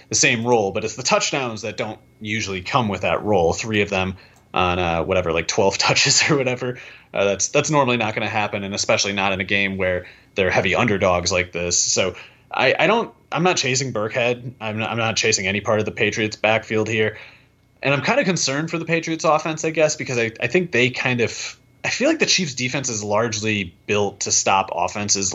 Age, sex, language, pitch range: 30-49, male, English, 100-120 Hz